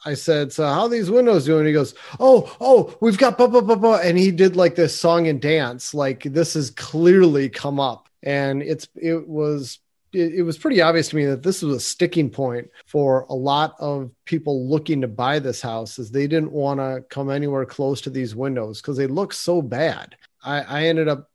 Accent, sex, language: American, male, English